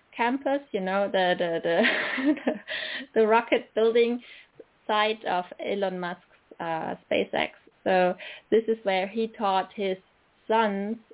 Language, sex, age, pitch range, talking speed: English, female, 20-39, 180-225 Hz, 125 wpm